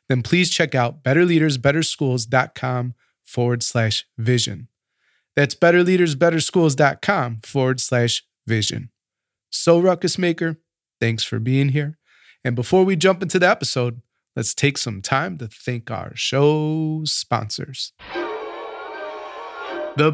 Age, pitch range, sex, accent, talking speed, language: 20-39, 120-170 Hz, male, American, 110 wpm, English